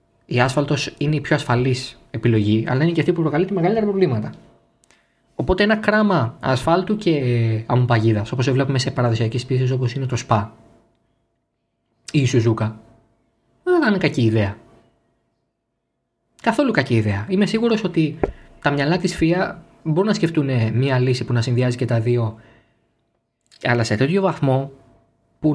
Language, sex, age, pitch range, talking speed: Greek, male, 20-39, 115-165 Hz, 150 wpm